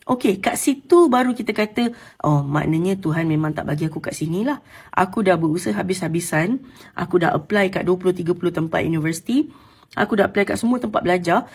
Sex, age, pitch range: female, 30-49, 180-270 Hz